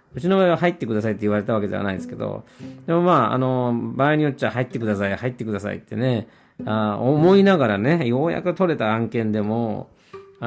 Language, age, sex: Japanese, 40-59, male